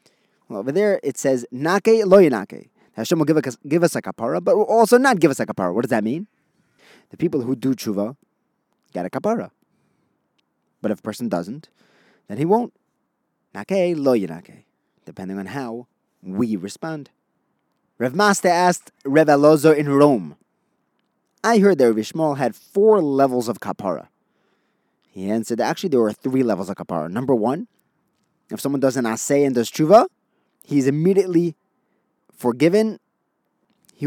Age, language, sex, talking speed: 30-49, English, male, 155 wpm